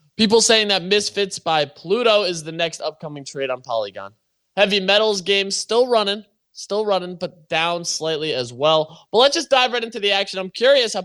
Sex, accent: male, American